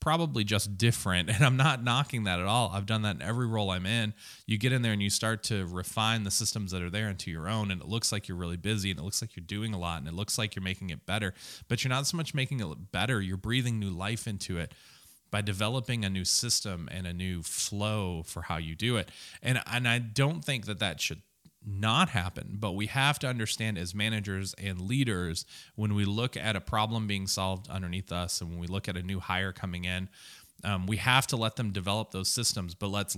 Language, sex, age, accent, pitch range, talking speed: English, male, 20-39, American, 95-115 Hz, 250 wpm